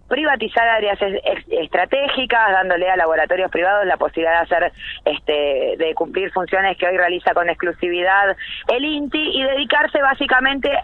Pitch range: 175-265 Hz